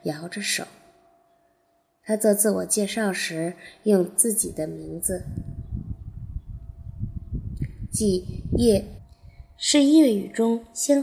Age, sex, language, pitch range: 20-39, female, Chinese, 175-235 Hz